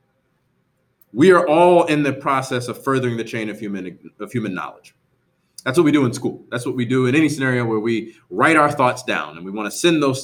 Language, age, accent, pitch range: English, 30-49, American, 110-145 Hz